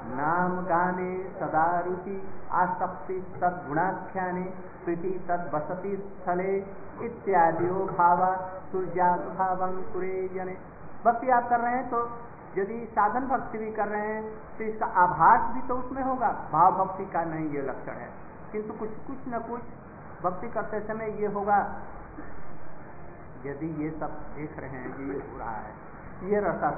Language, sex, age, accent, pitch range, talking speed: Hindi, male, 50-69, native, 170-210 Hz, 140 wpm